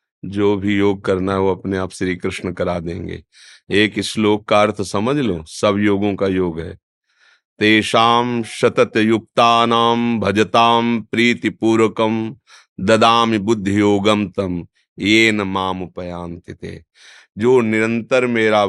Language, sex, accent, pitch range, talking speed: Hindi, male, native, 100-120 Hz, 115 wpm